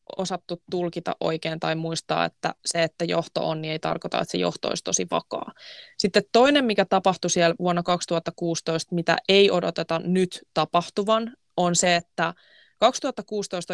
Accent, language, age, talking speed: native, Finnish, 20-39, 155 wpm